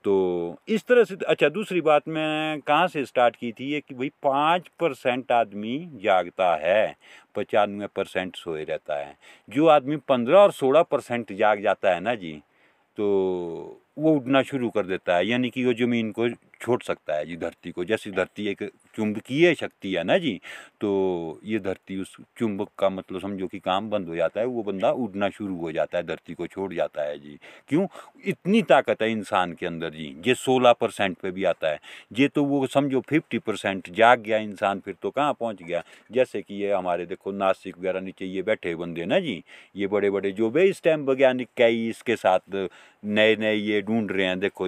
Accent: native